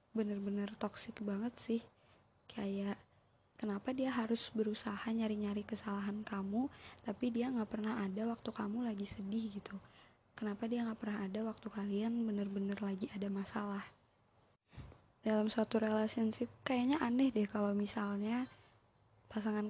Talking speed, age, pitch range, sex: 130 wpm, 20-39, 200-225 Hz, female